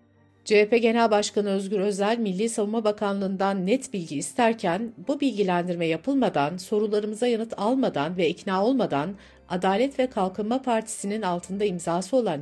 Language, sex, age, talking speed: Turkish, female, 60-79, 130 wpm